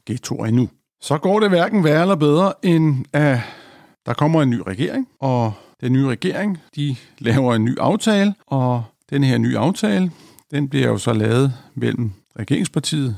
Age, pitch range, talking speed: 50-69, 115-155 Hz, 170 wpm